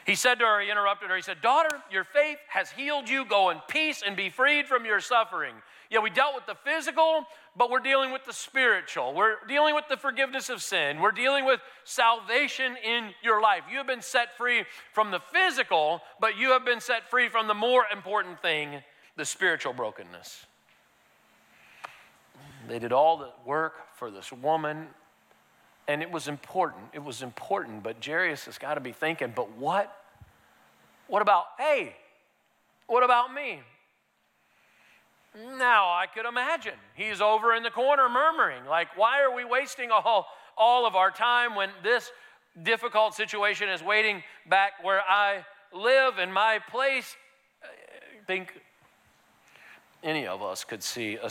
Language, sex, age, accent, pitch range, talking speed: English, male, 40-59, American, 190-260 Hz, 165 wpm